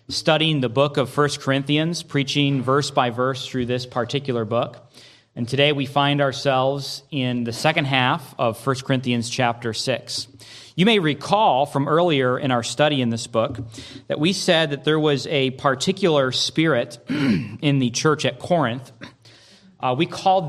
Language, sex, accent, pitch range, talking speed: English, male, American, 125-150 Hz, 165 wpm